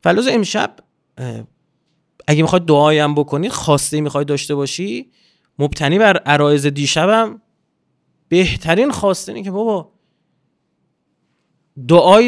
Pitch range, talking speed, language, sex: 165-235 Hz, 105 wpm, Persian, male